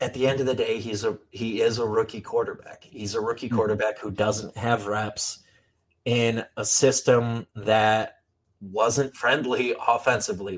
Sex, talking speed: male, 160 wpm